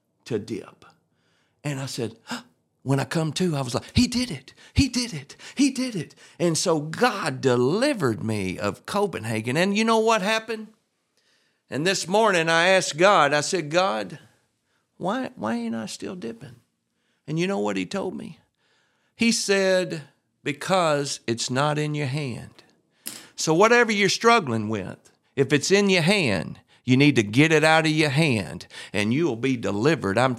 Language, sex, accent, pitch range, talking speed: English, male, American, 125-190 Hz, 175 wpm